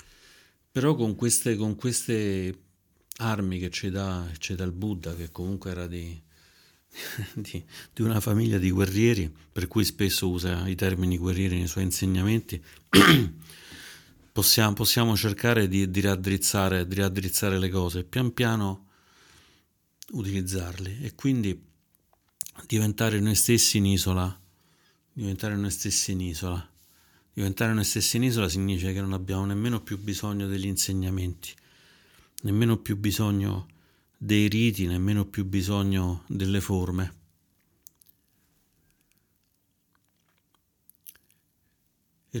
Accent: native